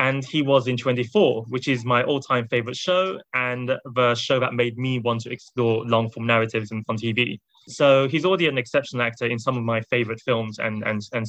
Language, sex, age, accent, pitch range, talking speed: English, male, 20-39, British, 115-135 Hz, 200 wpm